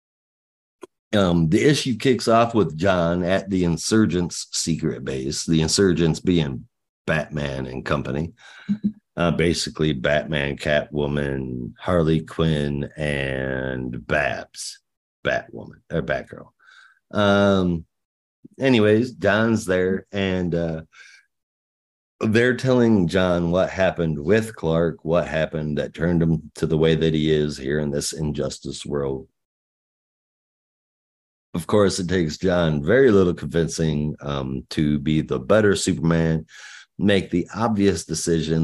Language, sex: English, male